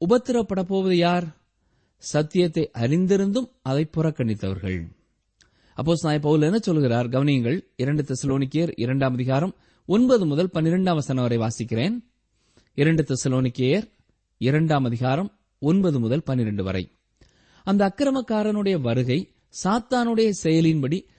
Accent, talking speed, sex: native, 75 wpm, male